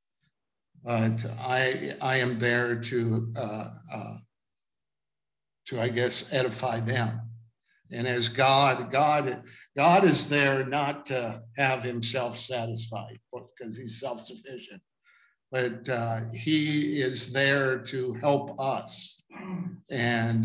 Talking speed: 110 wpm